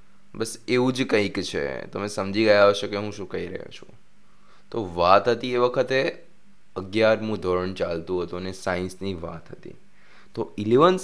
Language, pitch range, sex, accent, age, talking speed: Hindi, 95-120 Hz, male, native, 20-39, 110 wpm